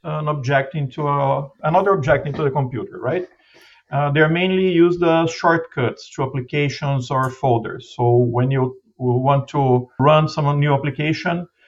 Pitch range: 130-160 Hz